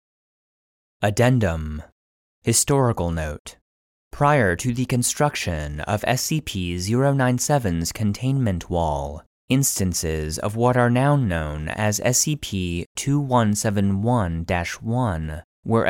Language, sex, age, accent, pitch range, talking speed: English, male, 30-49, American, 85-125 Hz, 75 wpm